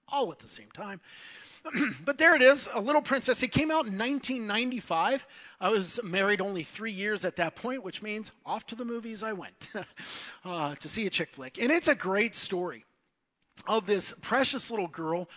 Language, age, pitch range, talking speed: English, 40-59, 165-220 Hz, 195 wpm